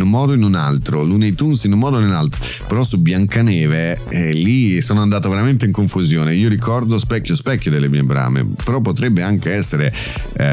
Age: 30-49